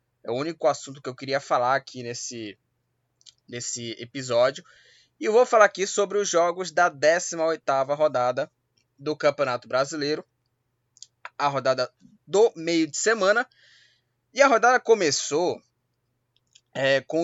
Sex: male